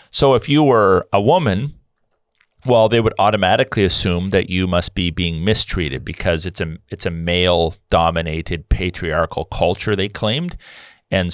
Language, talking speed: English, 150 wpm